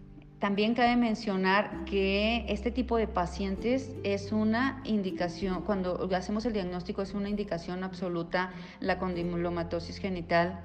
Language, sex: Spanish, female